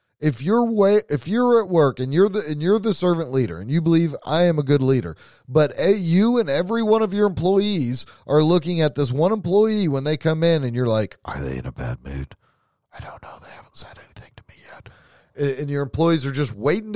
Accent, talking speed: American, 235 wpm